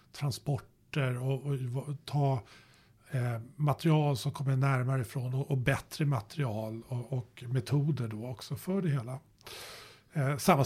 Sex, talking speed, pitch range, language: male, 135 wpm, 120-145 Hz, Swedish